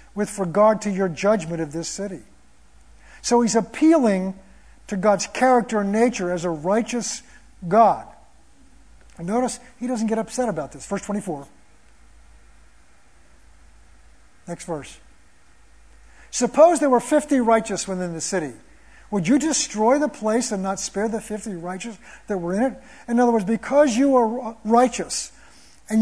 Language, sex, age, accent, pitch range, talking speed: English, male, 50-69, American, 185-265 Hz, 145 wpm